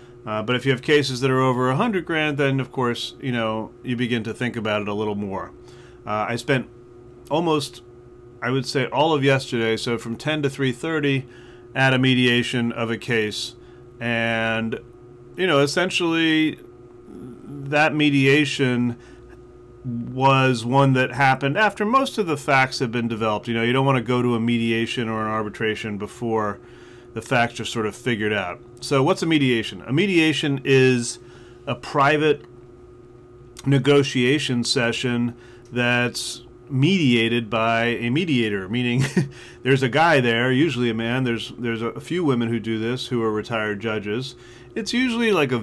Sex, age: male, 30-49